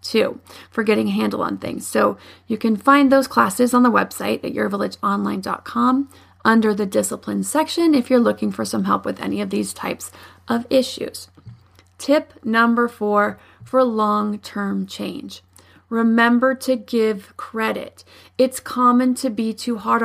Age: 30-49